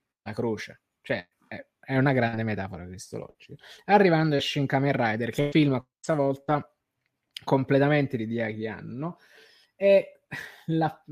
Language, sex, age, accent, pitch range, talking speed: Italian, male, 20-39, native, 120-140 Hz, 120 wpm